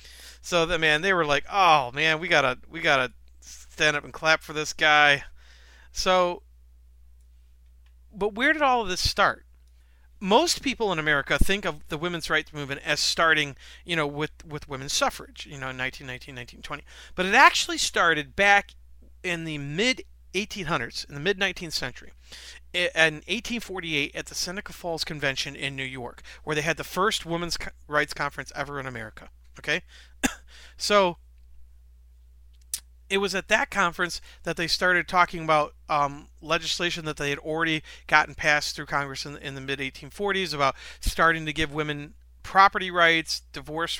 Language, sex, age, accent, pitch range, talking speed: English, male, 40-59, American, 125-170 Hz, 155 wpm